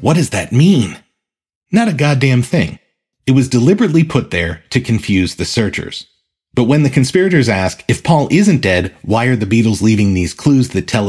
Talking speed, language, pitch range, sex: 190 wpm, English, 95-125 Hz, male